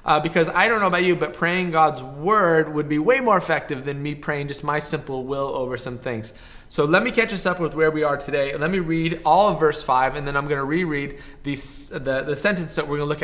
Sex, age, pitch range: male, 20-39, 150-180 Hz